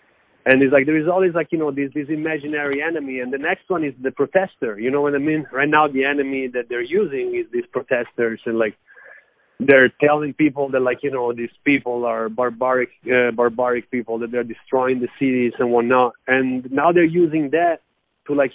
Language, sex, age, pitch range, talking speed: English, male, 30-49, 125-155 Hz, 210 wpm